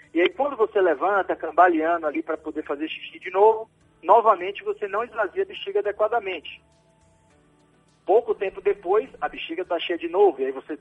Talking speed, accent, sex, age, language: 180 wpm, Brazilian, male, 40-59, Portuguese